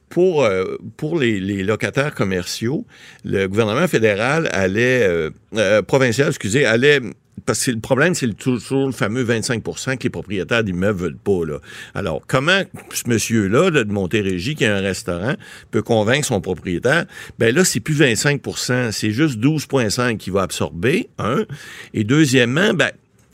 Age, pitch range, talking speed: 60-79, 105-145 Hz, 160 wpm